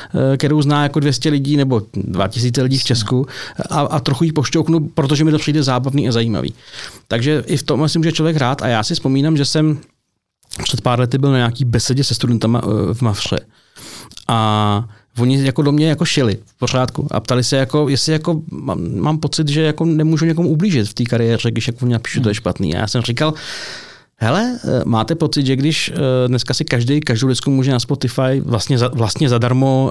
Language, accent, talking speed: Czech, native, 200 wpm